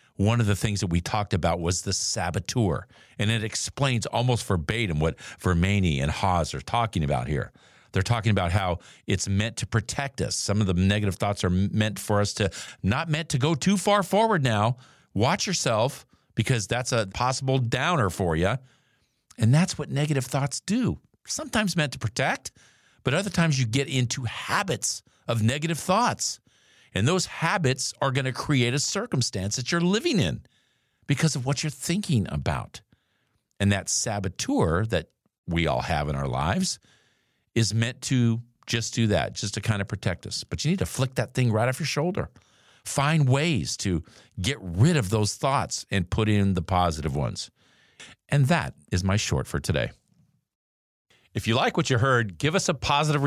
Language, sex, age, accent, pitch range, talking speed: English, male, 50-69, American, 100-140 Hz, 180 wpm